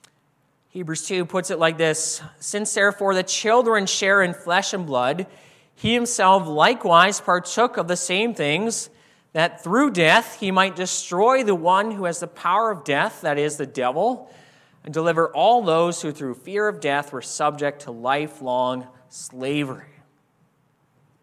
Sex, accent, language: male, American, English